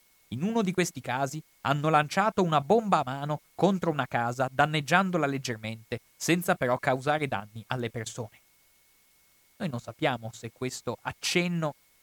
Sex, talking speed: male, 140 wpm